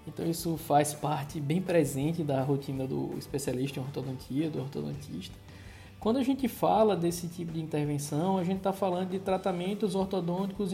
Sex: male